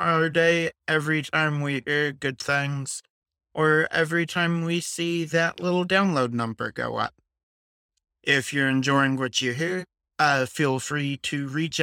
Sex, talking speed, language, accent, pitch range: male, 150 wpm, English, American, 135-170 Hz